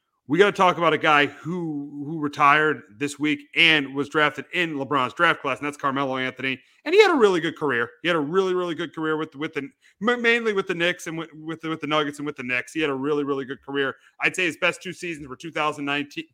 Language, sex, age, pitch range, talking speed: English, male, 30-49, 145-180 Hz, 255 wpm